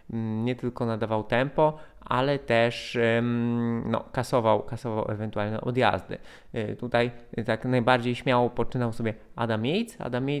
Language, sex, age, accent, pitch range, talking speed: Polish, male, 20-39, native, 115-155 Hz, 115 wpm